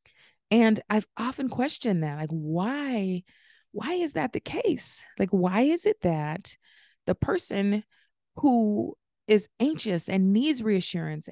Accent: American